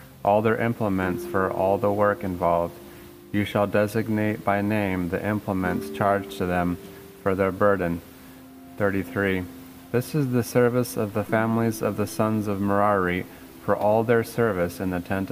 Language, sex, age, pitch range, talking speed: English, male, 30-49, 90-110 Hz, 160 wpm